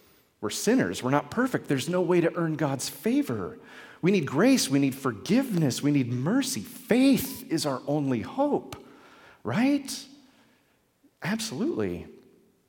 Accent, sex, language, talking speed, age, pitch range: American, male, English, 130 wpm, 40-59, 115-185 Hz